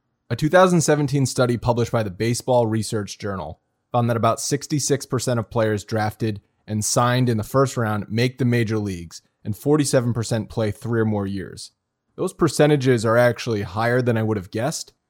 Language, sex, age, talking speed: English, male, 30-49, 170 wpm